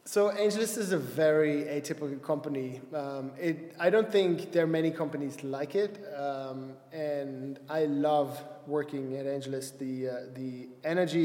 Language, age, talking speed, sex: English, 20-39, 155 wpm, male